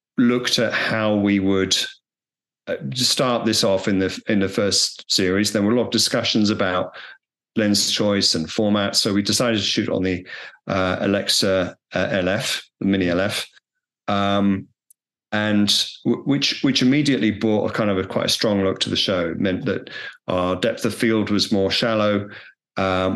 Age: 40-59